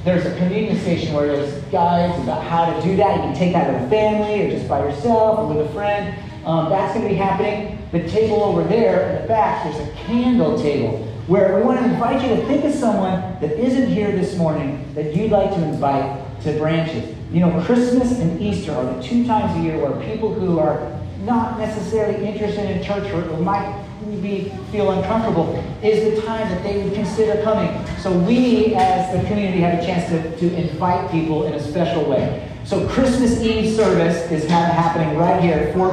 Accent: American